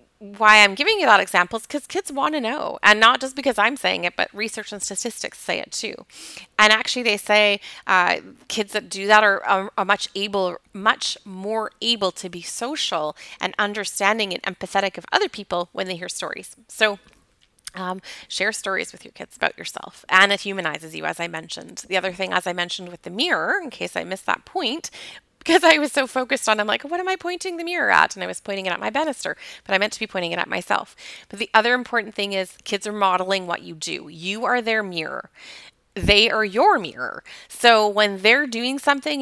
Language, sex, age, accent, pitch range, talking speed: English, female, 30-49, American, 195-240 Hz, 220 wpm